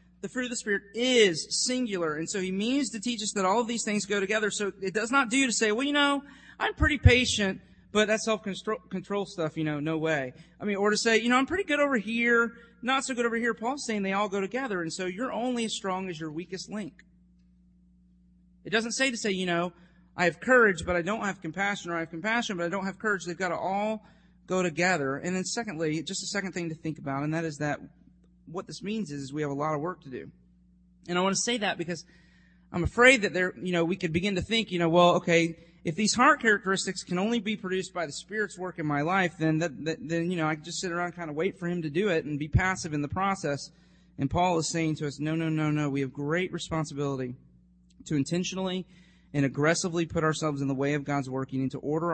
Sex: male